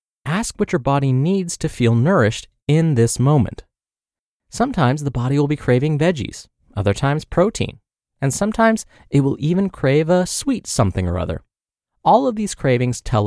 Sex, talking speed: male, 165 wpm